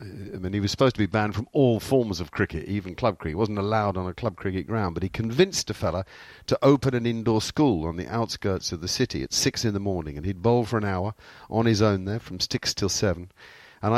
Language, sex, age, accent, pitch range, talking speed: English, male, 50-69, British, 90-120 Hz, 260 wpm